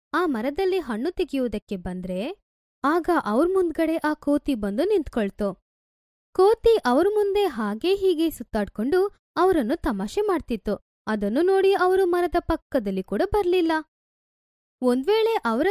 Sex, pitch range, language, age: female, 225-370 Hz, Hindi, 20-39